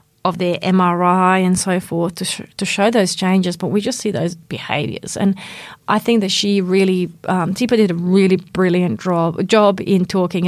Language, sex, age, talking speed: English, female, 30-49, 195 wpm